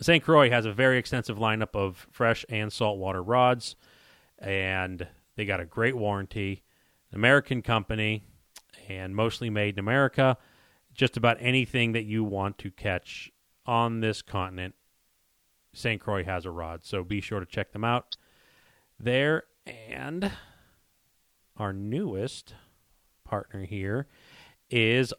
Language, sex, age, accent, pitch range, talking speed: English, male, 40-59, American, 95-125 Hz, 135 wpm